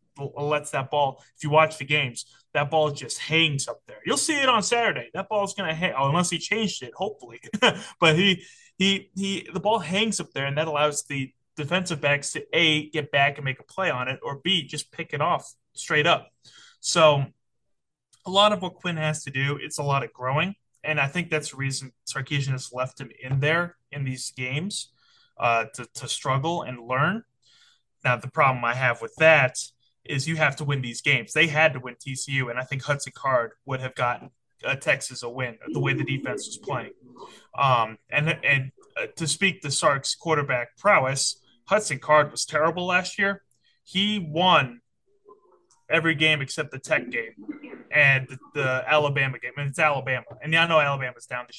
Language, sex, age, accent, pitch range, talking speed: English, male, 20-39, American, 130-160 Hz, 200 wpm